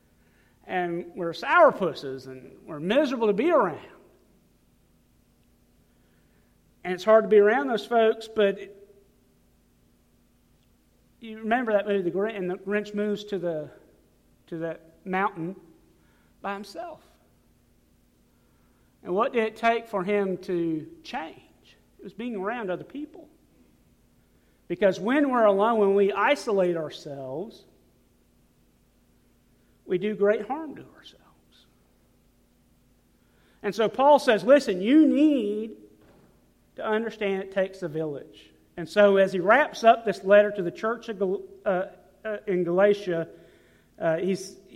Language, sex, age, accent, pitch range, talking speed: English, male, 50-69, American, 170-215 Hz, 125 wpm